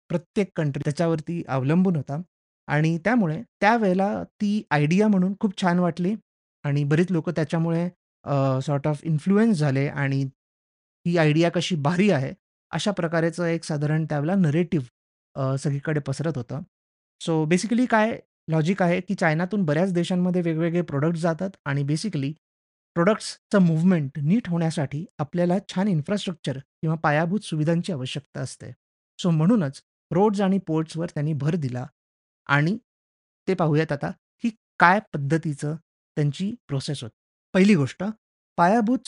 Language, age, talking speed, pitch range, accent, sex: Marathi, 30-49, 110 wpm, 145-190 Hz, native, male